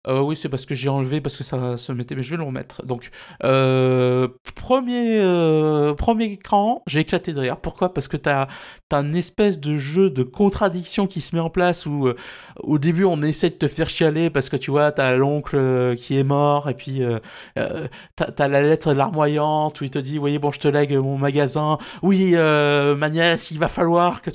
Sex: male